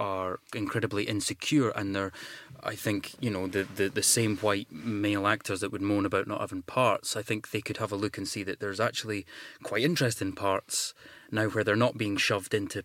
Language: English